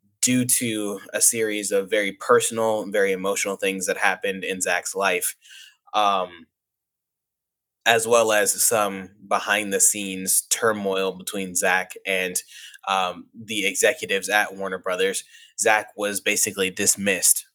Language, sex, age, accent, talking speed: English, male, 20-39, American, 130 wpm